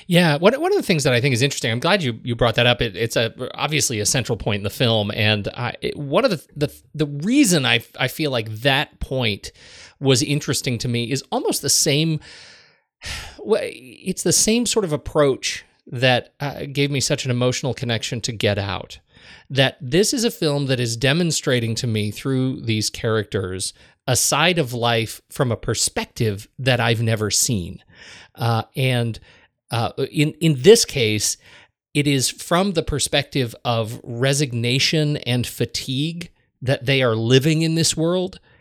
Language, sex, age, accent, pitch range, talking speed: English, male, 30-49, American, 115-150 Hz, 180 wpm